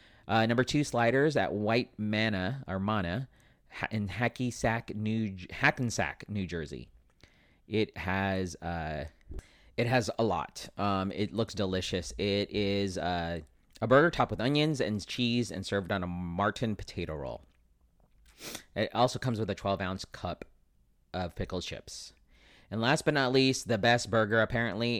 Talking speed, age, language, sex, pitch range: 150 wpm, 30-49, English, male, 90-115 Hz